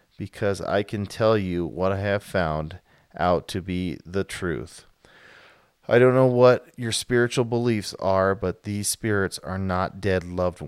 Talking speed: 165 wpm